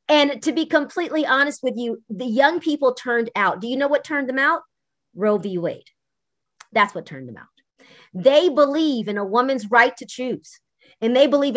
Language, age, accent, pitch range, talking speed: English, 30-49, American, 235-325 Hz, 195 wpm